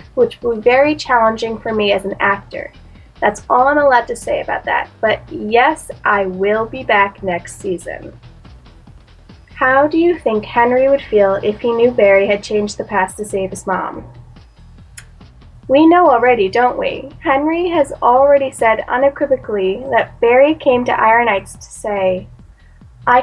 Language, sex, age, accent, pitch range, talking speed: English, female, 10-29, American, 200-250 Hz, 165 wpm